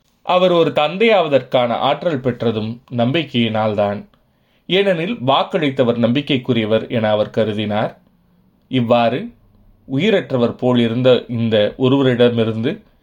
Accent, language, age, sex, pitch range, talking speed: native, Tamil, 30-49, male, 110-135 Hz, 80 wpm